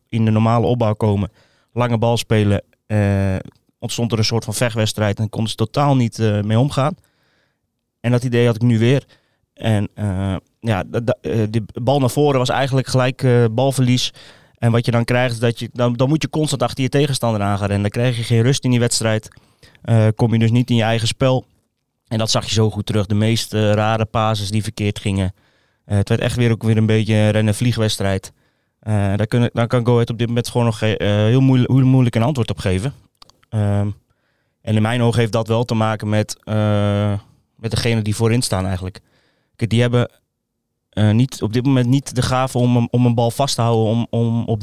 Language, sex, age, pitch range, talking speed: Dutch, male, 20-39, 110-125 Hz, 215 wpm